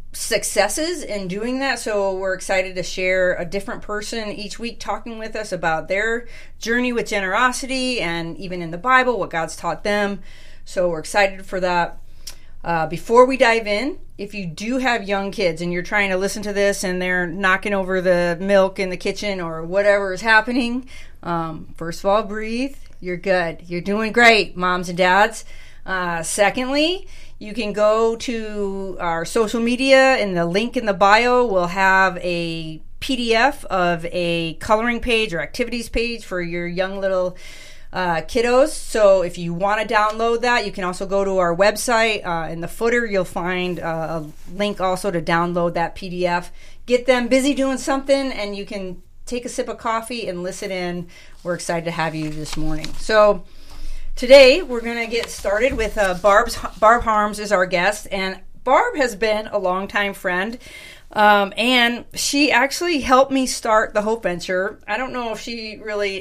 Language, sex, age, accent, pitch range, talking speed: English, female, 40-59, American, 180-230 Hz, 180 wpm